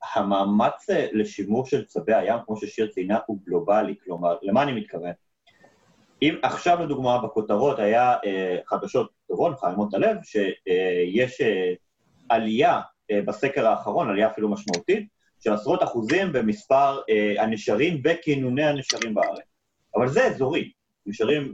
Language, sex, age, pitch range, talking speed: Hebrew, male, 30-49, 110-170 Hz, 130 wpm